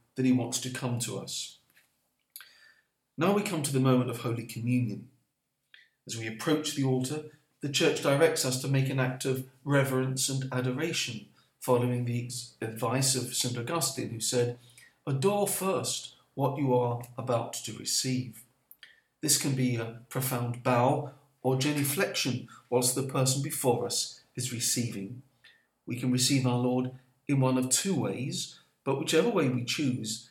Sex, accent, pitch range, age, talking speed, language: male, British, 120-140 Hz, 50-69, 155 wpm, English